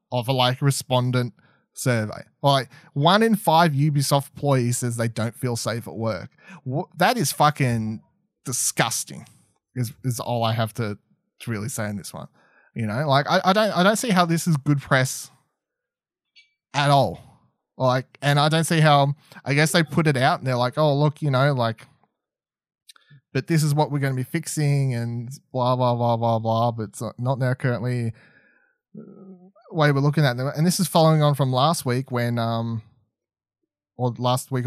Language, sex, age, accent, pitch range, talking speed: English, male, 20-39, Australian, 115-145 Hz, 190 wpm